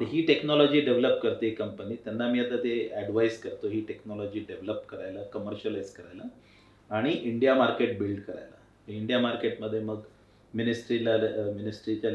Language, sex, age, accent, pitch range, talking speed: Marathi, male, 30-49, native, 105-115 Hz, 140 wpm